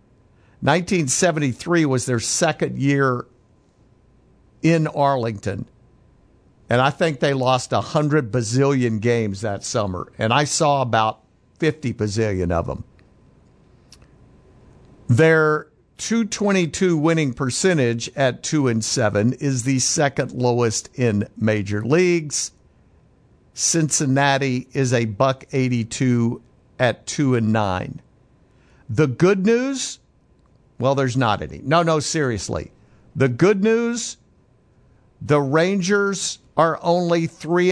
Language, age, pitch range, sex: English, 50-69, 120-155 Hz, male